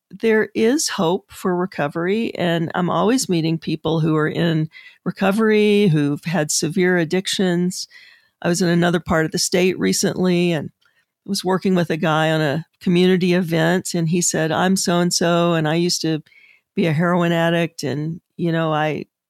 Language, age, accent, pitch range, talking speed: English, 50-69, American, 160-190 Hz, 175 wpm